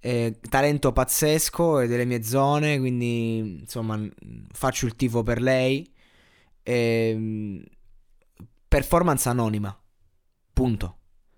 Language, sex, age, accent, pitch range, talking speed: Italian, male, 20-39, native, 115-145 Hz, 95 wpm